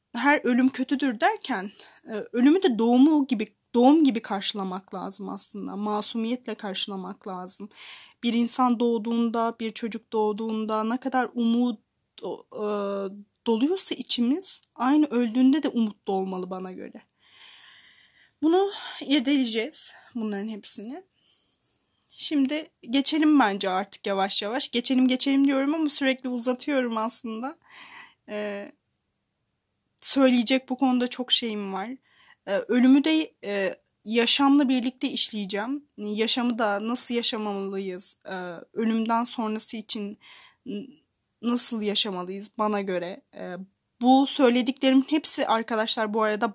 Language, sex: Turkish, female